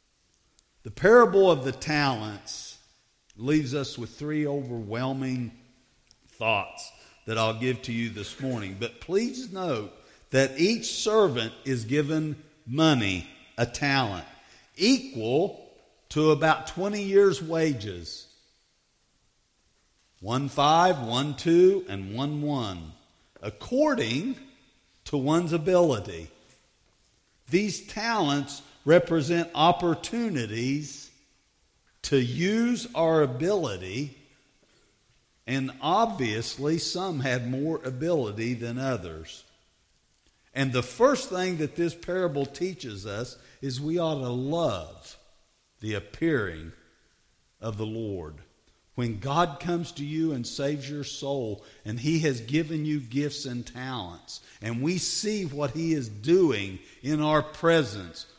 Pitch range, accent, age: 120-165 Hz, American, 50-69